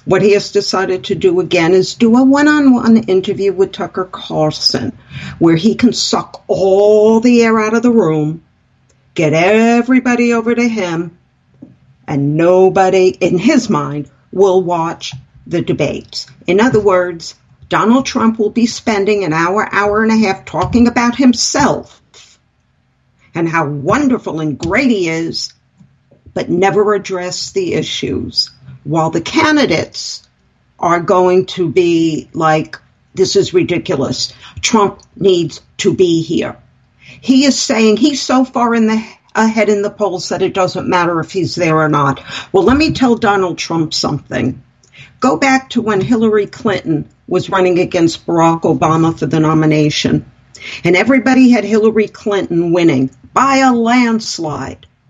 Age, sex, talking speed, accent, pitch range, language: 50-69, female, 150 wpm, American, 160-225 Hz, English